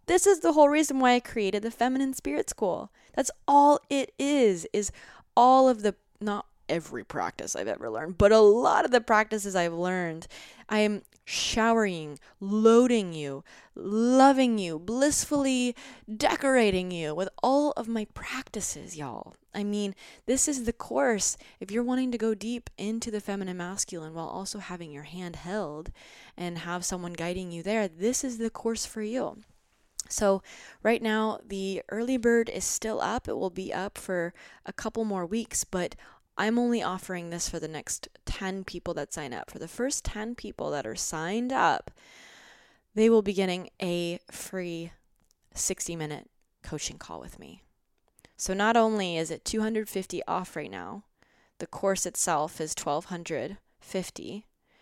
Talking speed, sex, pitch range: 165 wpm, female, 180-235 Hz